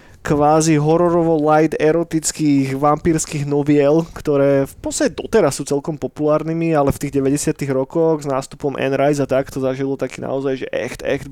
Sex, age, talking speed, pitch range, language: male, 20-39, 160 wpm, 140-170 Hz, Slovak